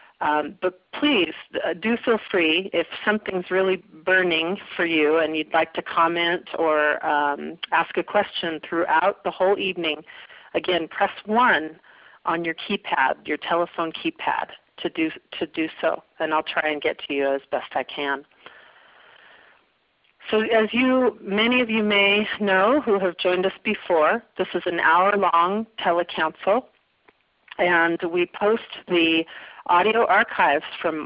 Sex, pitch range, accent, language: female, 160-200 Hz, American, English